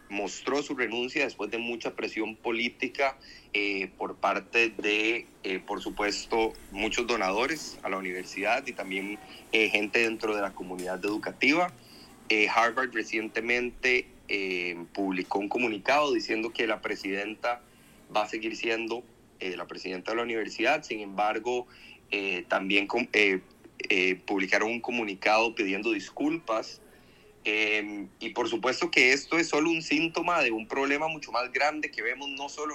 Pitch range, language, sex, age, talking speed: 105-140 Hz, Spanish, male, 30-49, 150 wpm